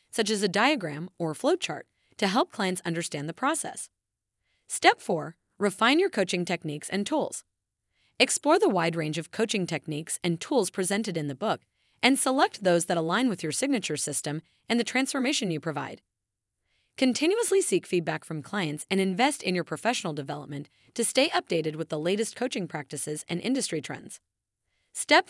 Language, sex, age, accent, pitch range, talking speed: English, female, 30-49, American, 150-235 Hz, 165 wpm